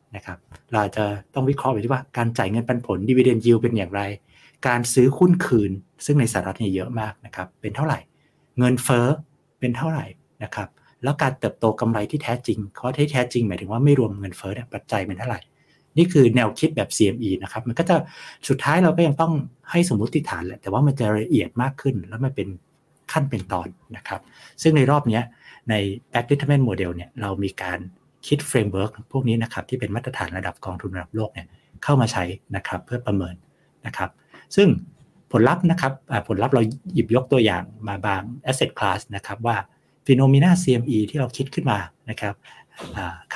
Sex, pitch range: male, 100-140 Hz